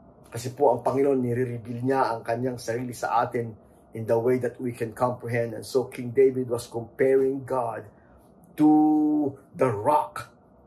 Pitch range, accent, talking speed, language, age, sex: 120-160 Hz, Filipino, 155 wpm, English, 50-69, male